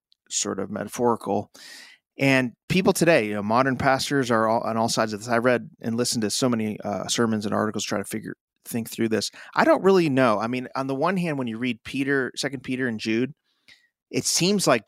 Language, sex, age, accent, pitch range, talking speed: English, male, 30-49, American, 105-135 Hz, 220 wpm